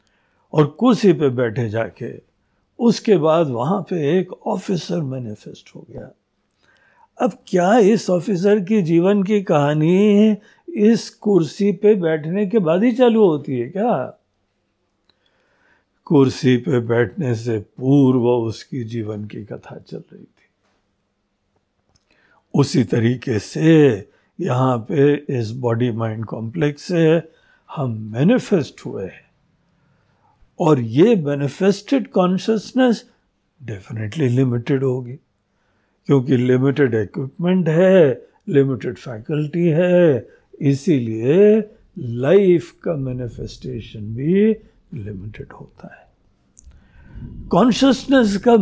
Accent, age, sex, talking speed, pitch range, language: native, 60-79, male, 100 wpm, 125-210 Hz, Hindi